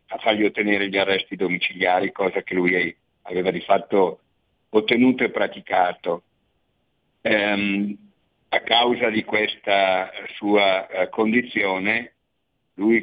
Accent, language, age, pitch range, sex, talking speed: native, Italian, 50-69, 95-110 Hz, male, 105 wpm